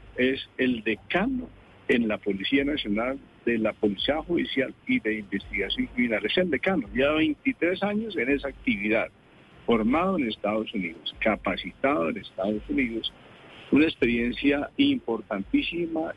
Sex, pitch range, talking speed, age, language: male, 105-140 Hz, 130 wpm, 50-69, Spanish